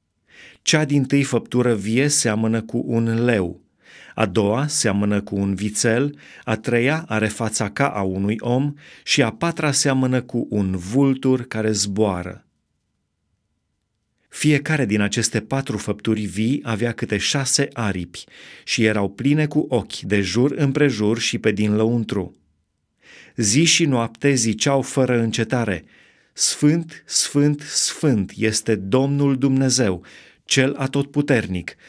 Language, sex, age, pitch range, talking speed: Romanian, male, 30-49, 105-135 Hz, 130 wpm